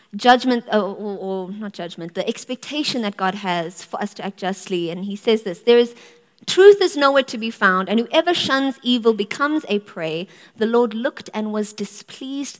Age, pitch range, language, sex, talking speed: 30-49, 195-240 Hz, English, female, 195 wpm